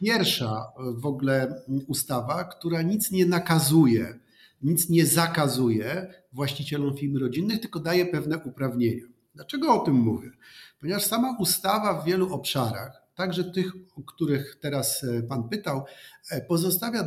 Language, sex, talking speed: Polish, male, 125 wpm